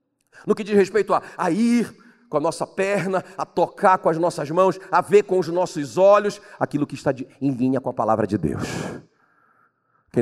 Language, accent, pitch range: Portuguese, Brazilian, 125-210 Hz